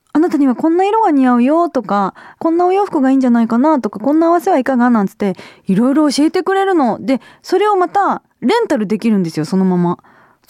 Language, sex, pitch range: Japanese, female, 200-315 Hz